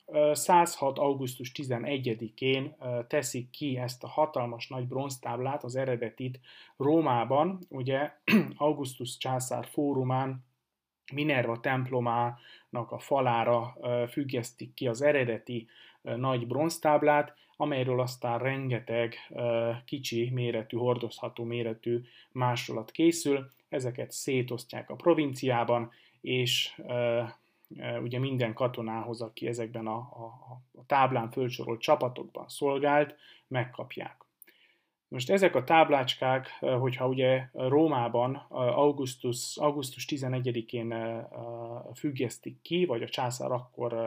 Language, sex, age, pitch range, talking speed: Hungarian, male, 30-49, 120-140 Hz, 95 wpm